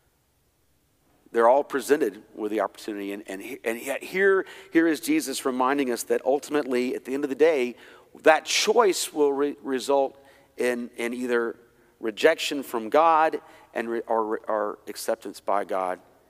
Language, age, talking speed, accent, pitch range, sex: English, 50-69, 160 wpm, American, 115-155 Hz, male